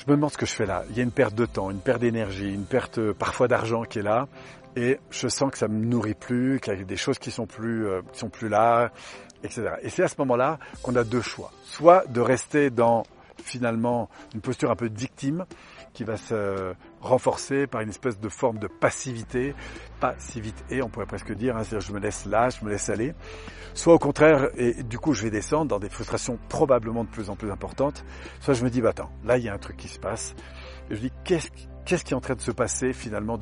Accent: French